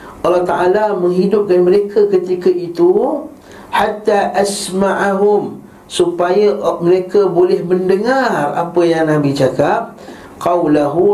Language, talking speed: Malay, 90 wpm